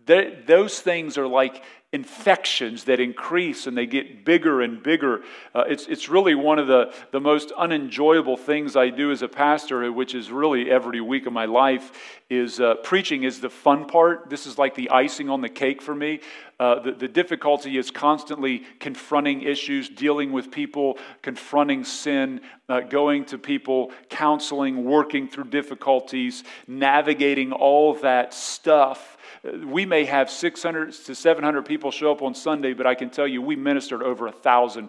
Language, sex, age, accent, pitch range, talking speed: English, male, 50-69, American, 130-170 Hz, 170 wpm